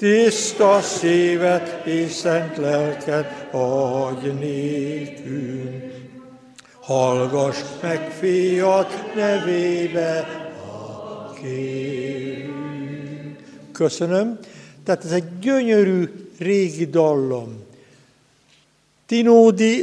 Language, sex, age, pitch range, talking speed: Hungarian, male, 60-79, 150-190 Hz, 55 wpm